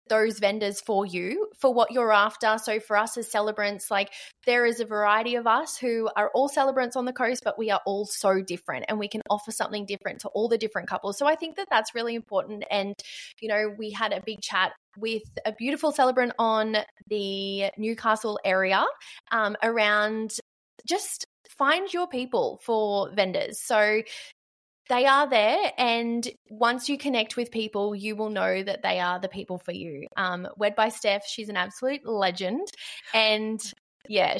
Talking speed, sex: 185 wpm, female